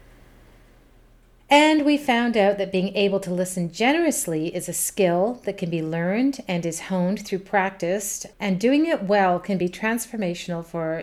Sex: female